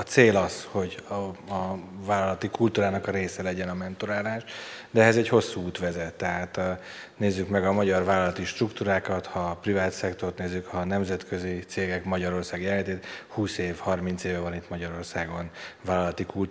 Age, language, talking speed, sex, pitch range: 30-49, Hungarian, 165 wpm, male, 90-105 Hz